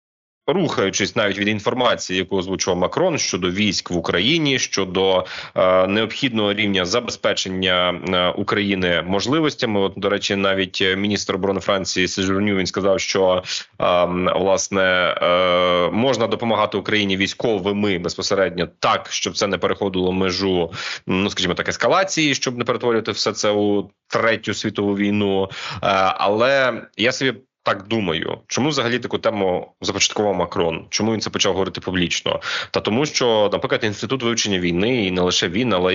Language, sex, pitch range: Ukrainian, male, 95-110 Hz